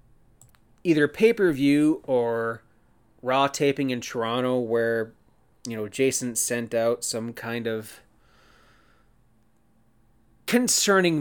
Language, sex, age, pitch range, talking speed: English, male, 30-49, 115-145 Hz, 100 wpm